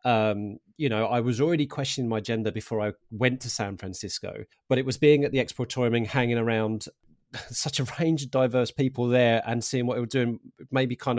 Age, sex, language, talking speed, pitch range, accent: 30-49, male, English, 215 wpm, 115-140 Hz, British